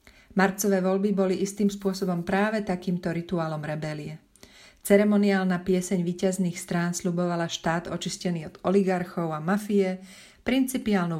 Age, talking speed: 40-59, 115 wpm